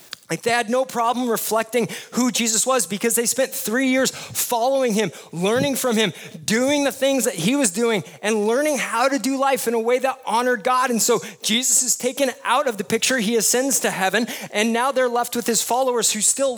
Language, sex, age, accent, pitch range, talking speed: English, male, 20-39, American, 180-240 Hz, 215 wpm